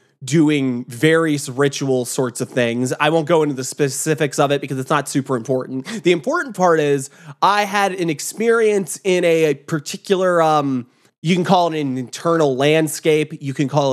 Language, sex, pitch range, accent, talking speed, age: English, male, 140-175 Hz, American, 175 wpm, 20-39